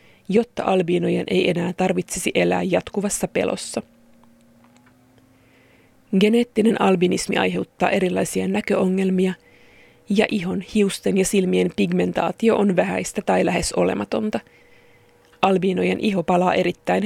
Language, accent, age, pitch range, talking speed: Finnish, native, 20-39, 170-205 Hz, 100 wpm